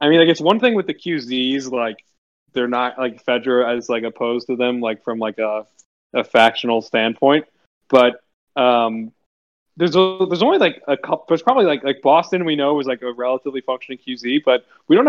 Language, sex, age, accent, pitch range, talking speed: English, male, 20-39, American, 120-150 Hz, 205 wpm